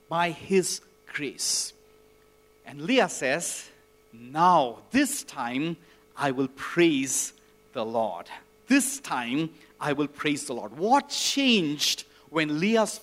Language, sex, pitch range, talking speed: English, male, 170-255 Hz, 115 wpm